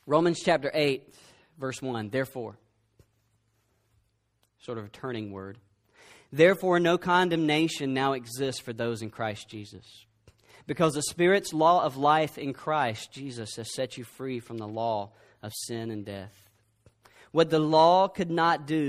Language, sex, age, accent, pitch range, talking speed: English, male, 40-59, American, 115-165 Hz, 150 wpm